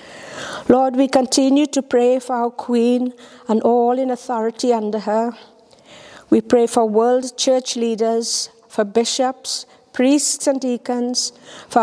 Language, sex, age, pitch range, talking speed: English, female, 60-79, 225-260 Hz, 130 wpm